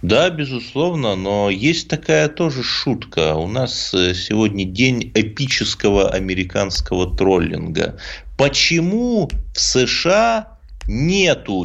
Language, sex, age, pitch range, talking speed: Russian, male, 30-49, 90-150 Hz, 95 wpm